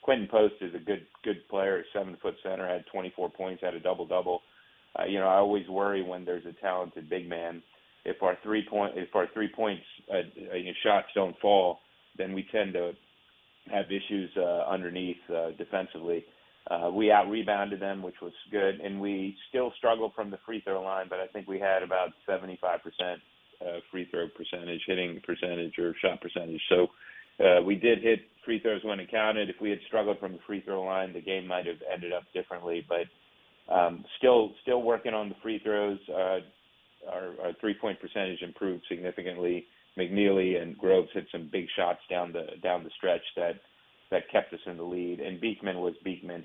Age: 40-59